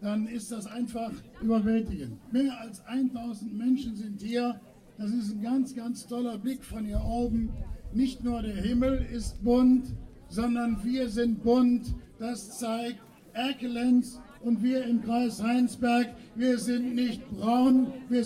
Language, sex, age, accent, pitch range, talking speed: German, male, 60-79, German, 225-250 Hz, 145 wpm